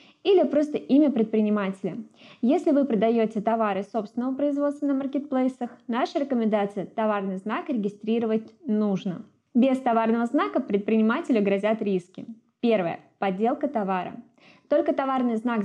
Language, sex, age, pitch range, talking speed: Russian, female, 20-39, 205-255 Hz, 115 wpm